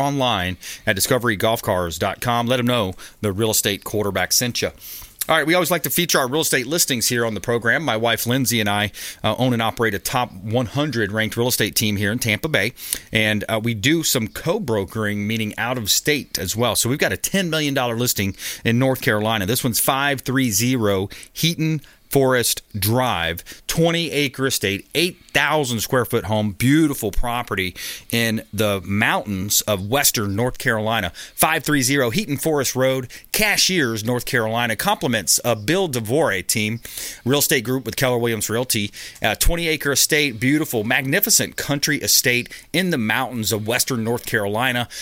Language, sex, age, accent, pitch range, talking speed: English, male, 30-49, American, 110-140 Hz, 170 wpm